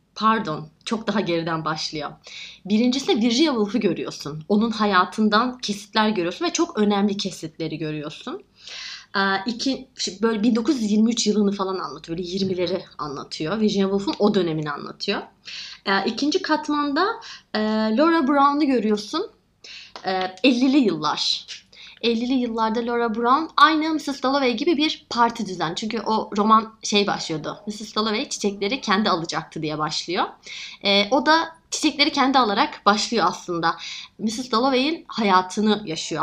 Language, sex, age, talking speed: Turkish, female, 30-49, 130 wpm